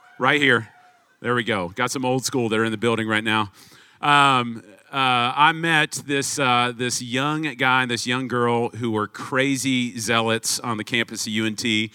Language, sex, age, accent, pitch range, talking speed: English, male, 40-59, American, 105-130 Hz, 185 wpm